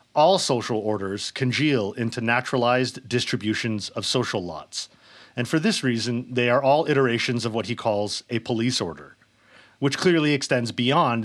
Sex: male